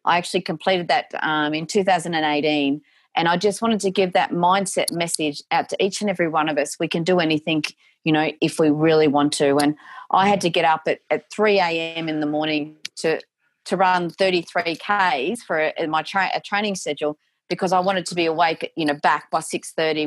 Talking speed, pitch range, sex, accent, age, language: 220 wpm, 150-180 Hz, female, Australian, 30-49, English